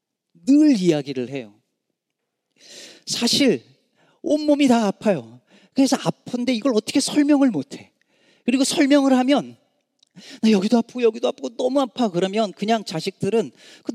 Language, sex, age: Korean, male, 40-59